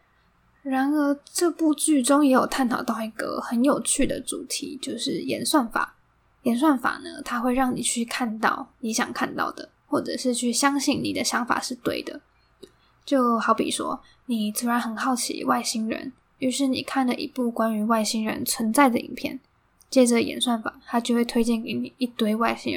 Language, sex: Chinese, female